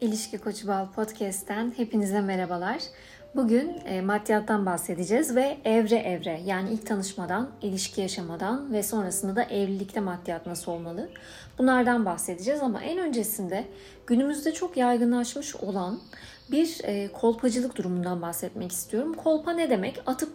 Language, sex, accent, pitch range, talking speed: Turkish, female, native, 205-275 Hz, 125 wpm